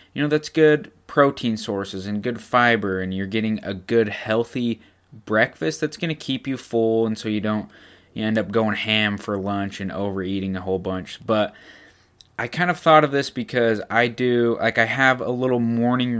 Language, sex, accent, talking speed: English, male, American, 195 wpm